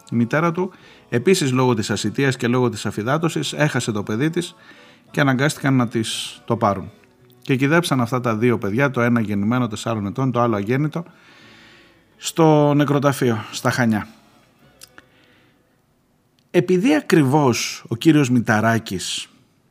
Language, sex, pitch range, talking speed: Greek, male, 110-155 Hz, 135 wpm